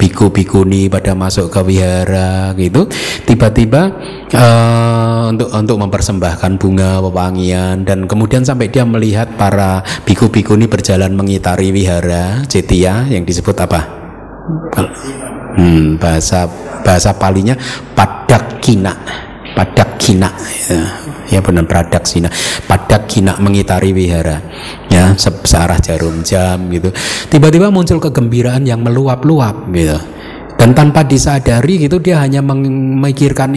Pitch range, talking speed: 95-135 Hz, 115 wpm